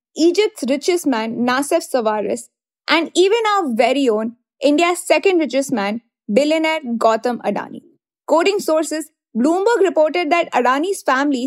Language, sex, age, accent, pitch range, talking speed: English, female, 20-39, Indian, 260-340 Hz, 125 wpm